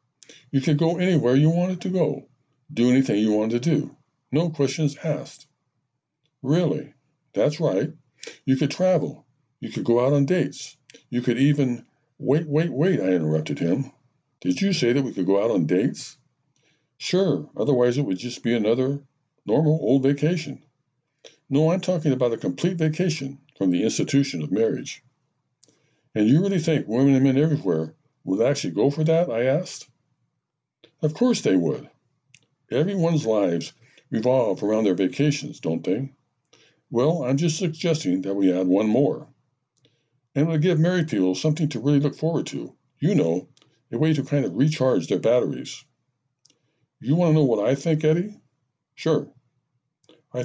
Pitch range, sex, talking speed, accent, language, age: 130-155 Hz, male, 165 wpm, American, English, 60-79